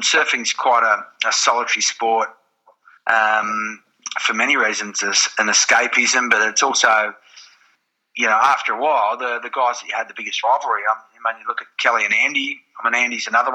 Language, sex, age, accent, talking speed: English, male, 30-49, Australian, 180 wpm